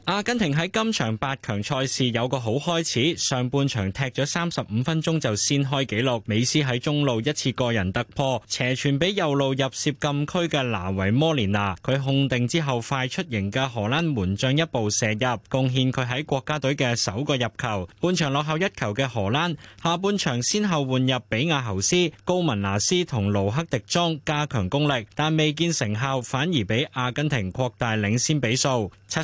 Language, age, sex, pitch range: Chinese, 20-39, male, 120-160 Hz